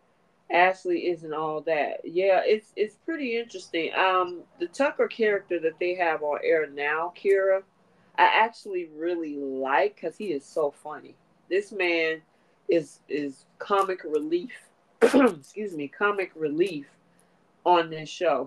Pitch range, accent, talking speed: 155-195 Hz, American, 135 wpm